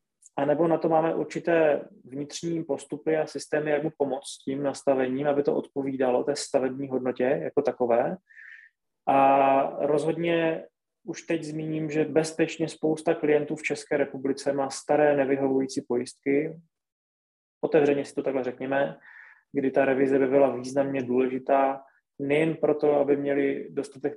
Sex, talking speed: male, 140 wpm